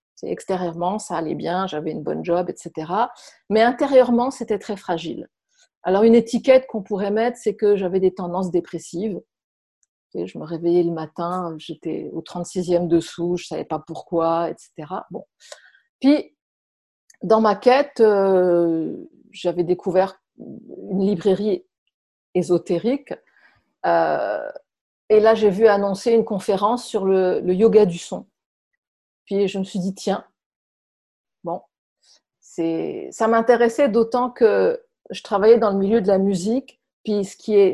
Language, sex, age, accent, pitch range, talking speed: French, female, 50-69, French, 180-230 Hz, 140 wpm